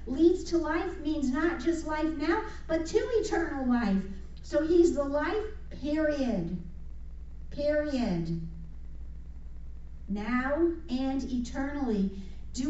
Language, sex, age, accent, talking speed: English, female, 50-69, American, 105 wpm